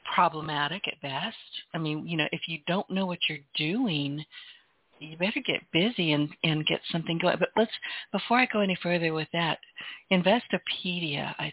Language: English